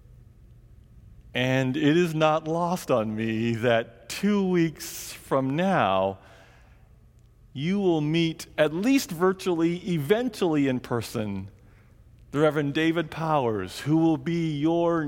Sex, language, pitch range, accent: male, English, 120-155 Hz, American